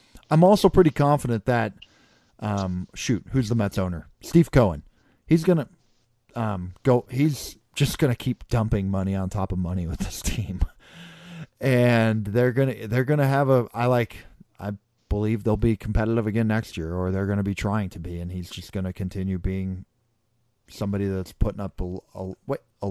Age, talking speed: 40-59, 190 wpm